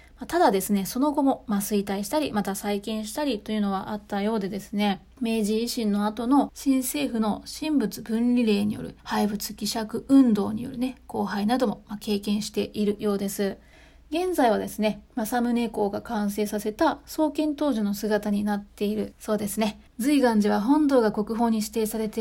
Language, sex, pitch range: Japanese, female, 205-255 Hz